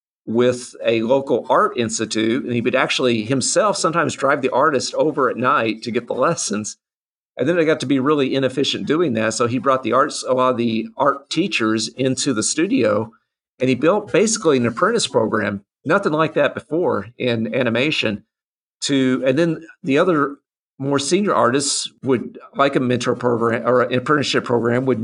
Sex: male